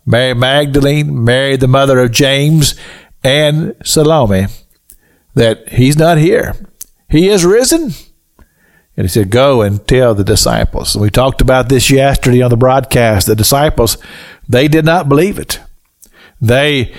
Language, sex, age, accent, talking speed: English, male, 60-79, American, 145 wpm